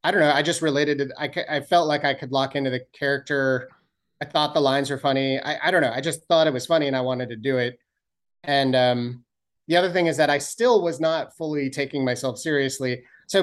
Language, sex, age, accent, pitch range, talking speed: English, male, 30-49, American, 130-155 Hz, 245 wpm